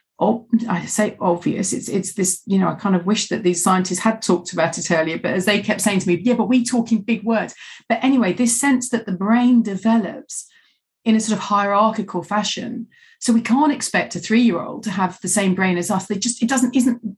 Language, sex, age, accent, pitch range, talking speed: English, female, 40-59, British, 180-225 Hz, 235 wpm